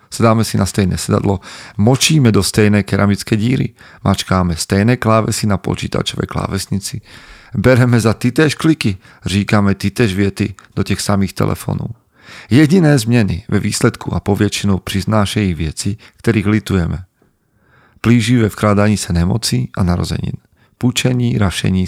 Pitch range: 100-120 Hz